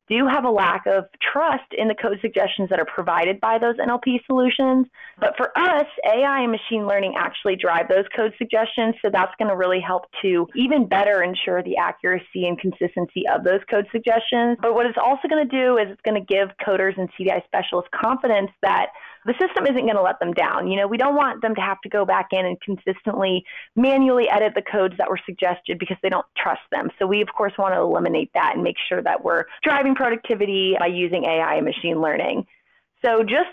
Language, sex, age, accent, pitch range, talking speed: English, female, 30-49, American, 190-245 Hz, 220 wpm